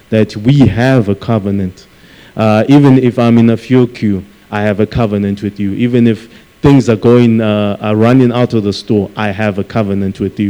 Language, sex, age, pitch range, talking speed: English, male, 20-39, 105-120 Hz, 210 wpm